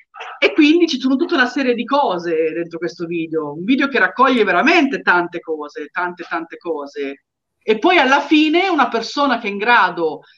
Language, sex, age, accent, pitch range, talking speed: Italian, female, 40-59, native, 170-235 Hz, 185 wpm